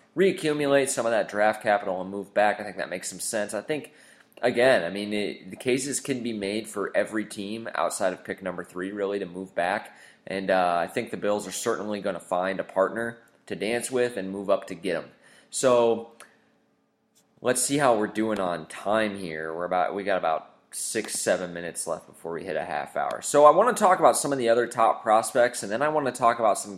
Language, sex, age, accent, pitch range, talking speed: English, male, 20-39, American, 100-130 Hz, 235 wpm